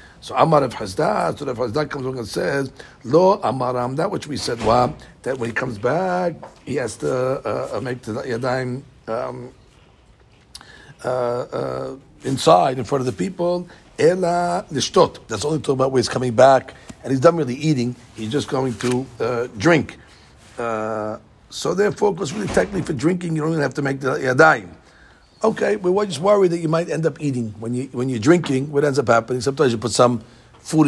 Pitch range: 125-160 Hz